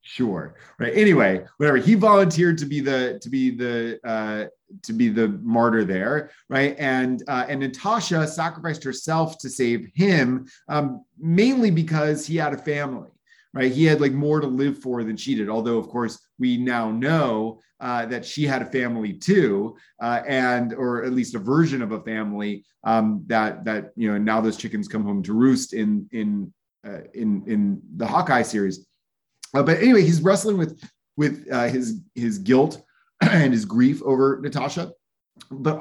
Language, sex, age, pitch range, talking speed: English, male, 30-49, 115-160 Hz, 180 wpm